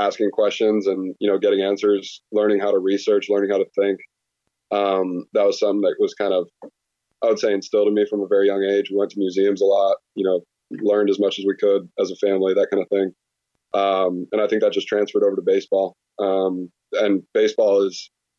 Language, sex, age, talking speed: English, male, 20-39, 225 wpm